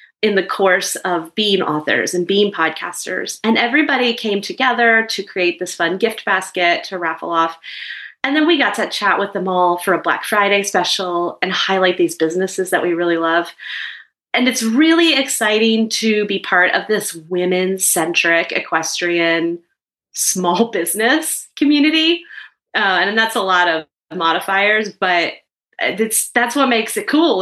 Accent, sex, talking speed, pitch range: American, female, 155 wpm, 175-225 Hz